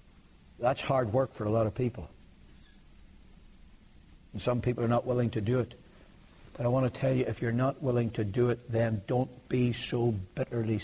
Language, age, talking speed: English, 60-79, 195 wpm